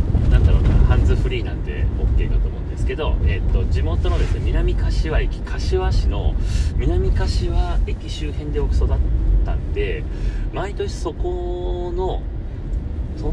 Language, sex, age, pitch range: Japanese, male, 30-49, 75-95 Hz